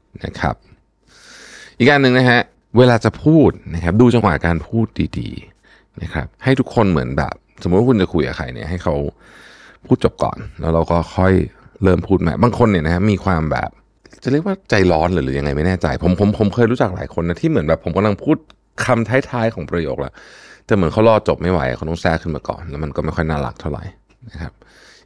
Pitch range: 80-115 Hz